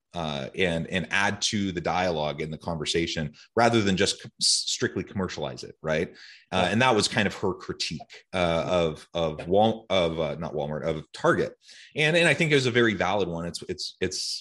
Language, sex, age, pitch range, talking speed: English, male, 30-49, 85-110 Hz, 205 wpm